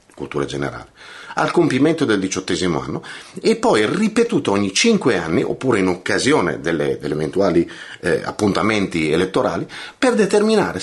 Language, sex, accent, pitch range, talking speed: Italian, male, native, 120-195 Hz, 135 wpm